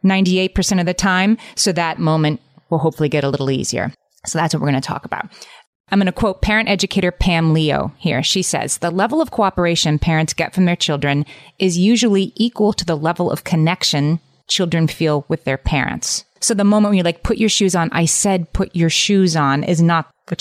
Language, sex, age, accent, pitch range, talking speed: English, female, 30-49, American, 145-175 Hz, 210 wpm